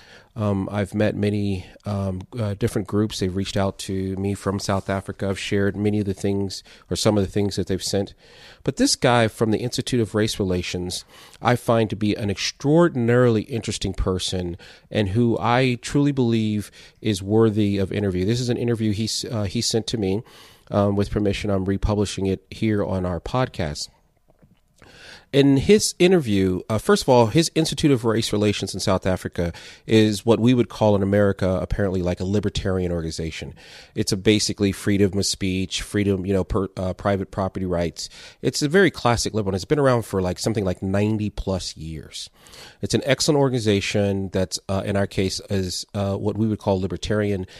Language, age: English, 30-49